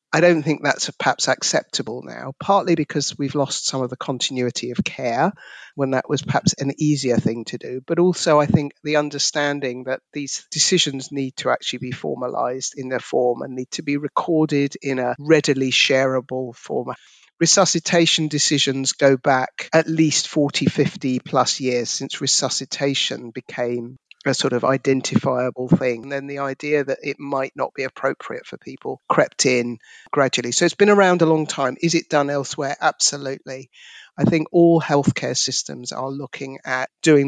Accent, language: British, English